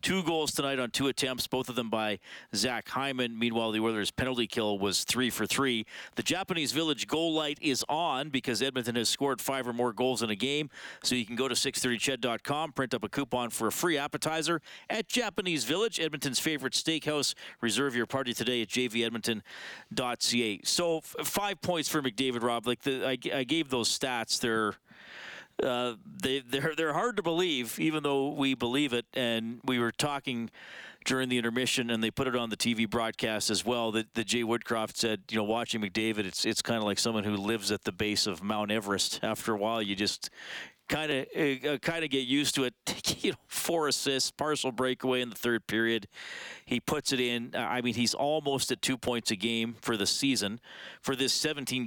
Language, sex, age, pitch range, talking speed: English, male, 40-59, 115-140 Hz, 200 wpm